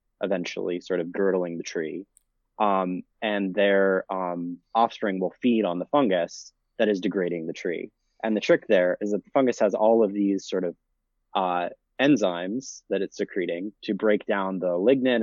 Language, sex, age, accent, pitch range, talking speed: English, male, 20-39, American, 95-115 Hz, 175 wpm